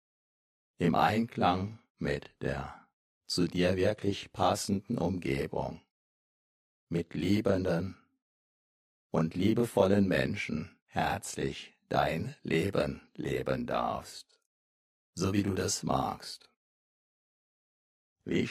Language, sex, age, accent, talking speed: German, male, 60-79, German, 80 wpm